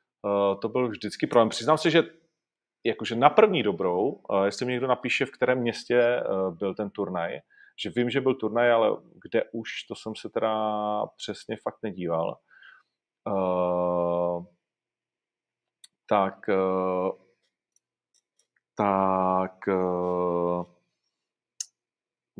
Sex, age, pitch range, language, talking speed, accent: male, 40-59, 95-115 Hz, Czech, 120 wpm, native